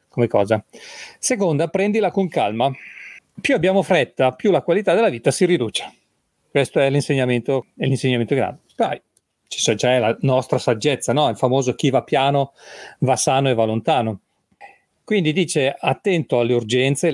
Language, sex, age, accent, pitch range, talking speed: Italian, male, 40-59, native, 120-150 Hz, 155 wpm